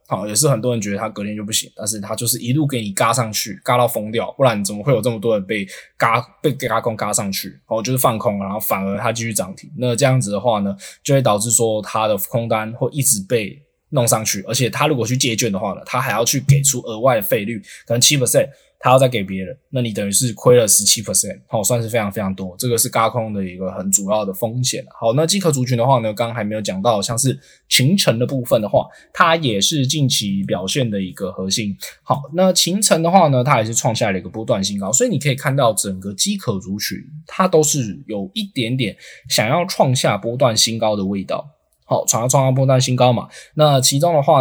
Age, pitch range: 10-29, 105-130 Hz